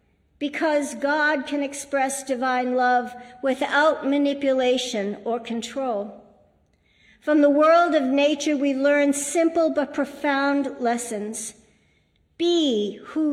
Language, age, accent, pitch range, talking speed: English, 50-69, American, 235-290 Hz, 105 wpm